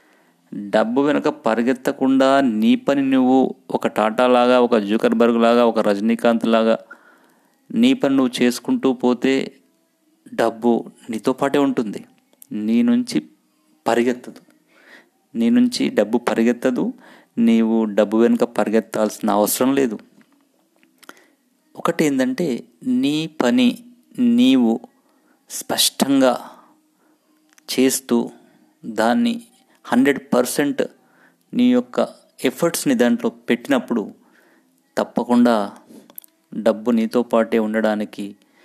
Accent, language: native, Telugu